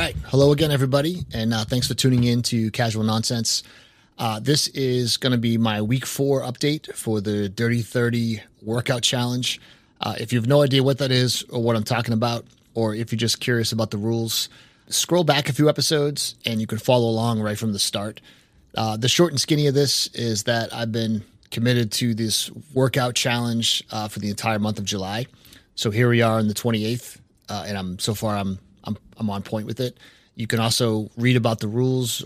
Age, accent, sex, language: 30-49, American, male, English